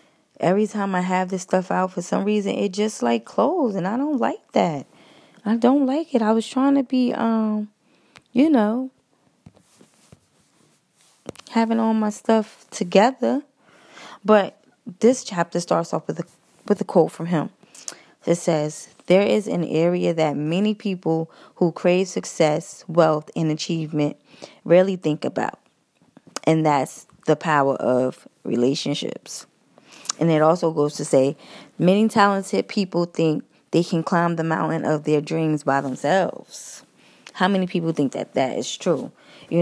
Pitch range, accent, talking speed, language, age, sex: 155-200 Hz, American, 150 wpm, English, 20-39, female